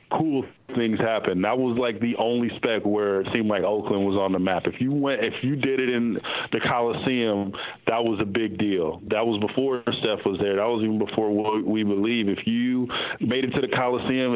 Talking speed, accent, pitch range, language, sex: 220 wpm, American, 100-115 Hz, English, male